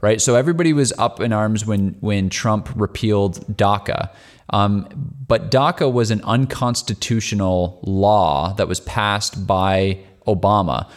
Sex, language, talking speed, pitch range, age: male, English, 130 wpm, 100-130 Hz, 20-39